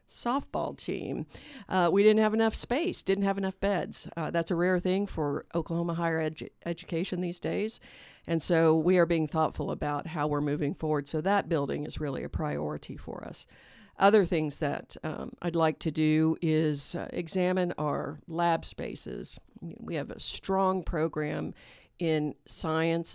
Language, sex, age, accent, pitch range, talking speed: English, female, 50-69, American, 160-200 Hz, 165 wpm